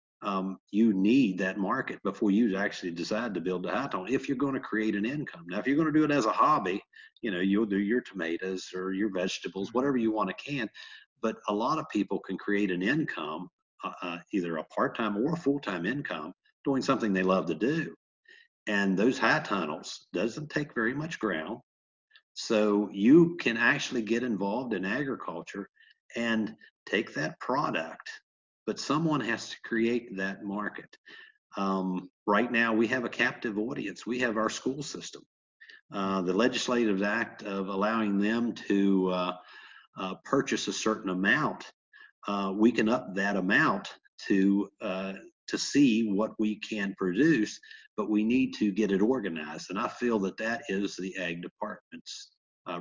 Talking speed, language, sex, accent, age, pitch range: 175 wpm, English, male, American, 50-69, 95-125 Hz